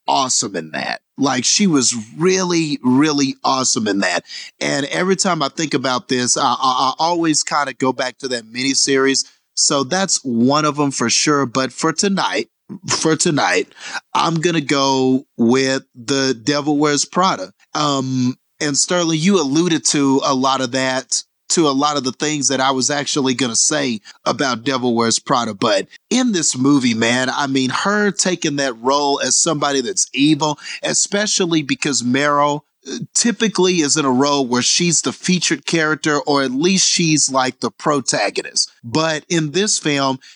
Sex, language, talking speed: male, English, 170 wpm